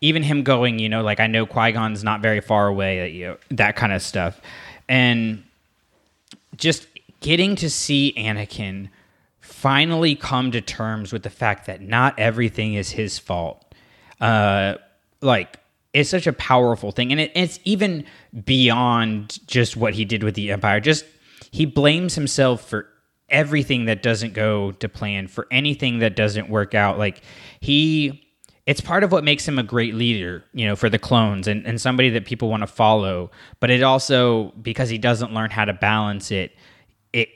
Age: 20-39